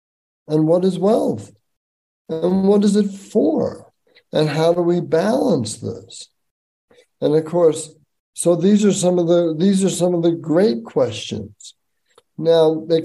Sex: male